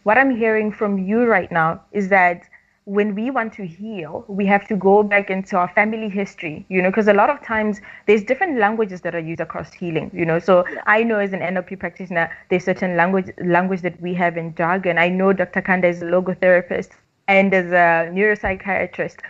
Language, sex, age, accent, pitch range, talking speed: English, female, 20-39, South African, 180-220 Hz, 210 wpm